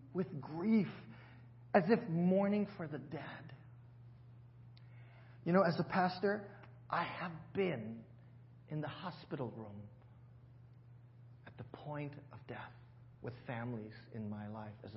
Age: 40-59